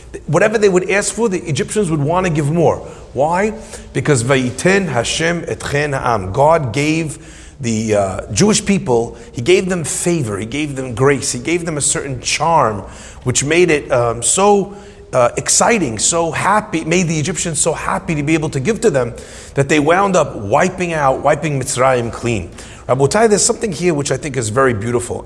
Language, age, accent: English, 40-59, American